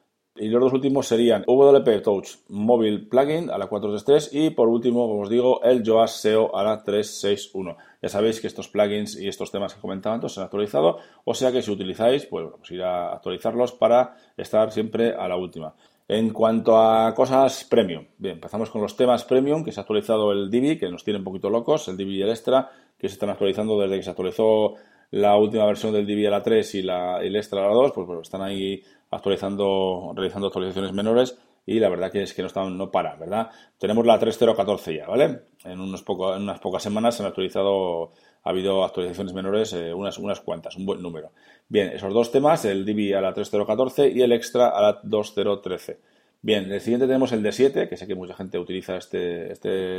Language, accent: Spanish, Spanish